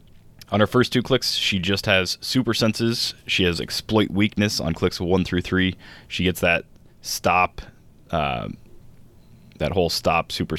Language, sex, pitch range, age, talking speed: English, male, 85-105 Hz, 20-39, 160 wpm